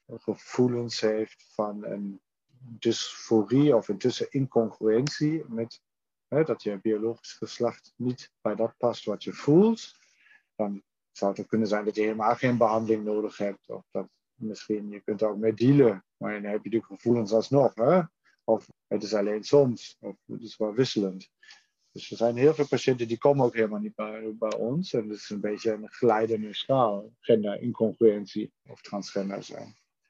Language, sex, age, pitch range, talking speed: Dutch, male, 50-69, 105-130 Hz, 175 wpm